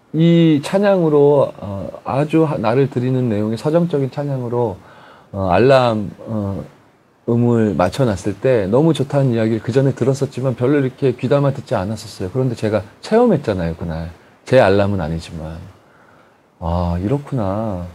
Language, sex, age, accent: Korean, male, 30-49, native